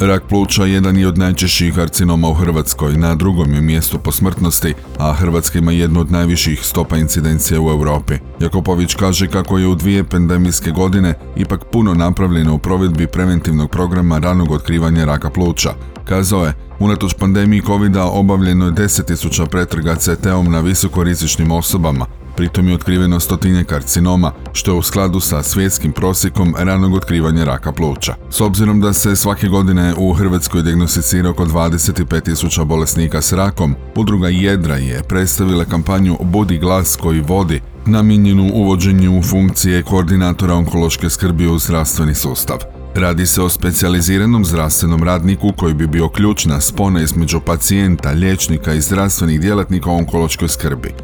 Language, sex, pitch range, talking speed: Croatian, male, 80-95 Hz, 145 wpm